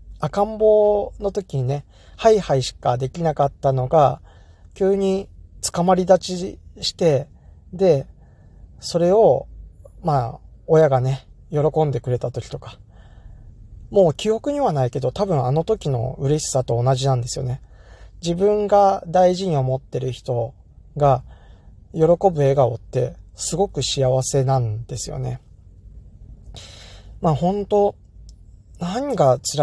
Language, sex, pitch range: Japanese, male, 115-155 Hz